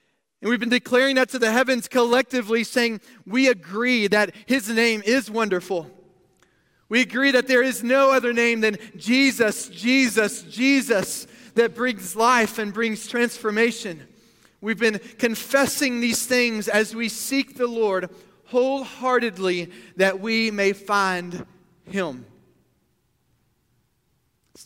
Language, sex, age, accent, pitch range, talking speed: English, male, 30-49, American, 190-245 Hz, 125 wpm